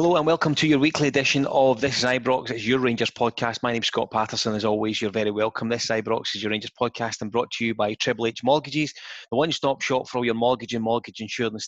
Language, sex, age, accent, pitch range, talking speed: English, male, 30-49, British, 110-130 Hz, 255 wpm